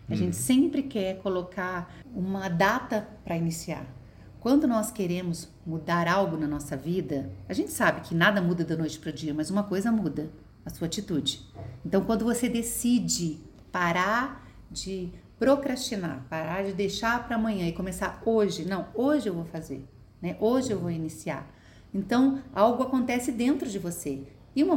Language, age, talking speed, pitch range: Portuguese, 40-59, 165 wpm, 165-220 Hz